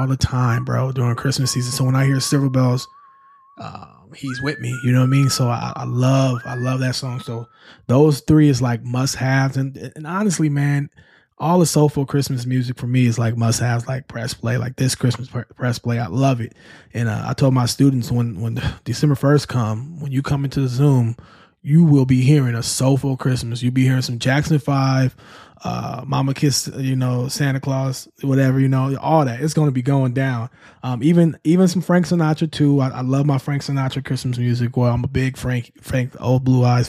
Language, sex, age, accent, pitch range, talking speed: English, male, 20-39, American, 125-150 Hz, 220 wpm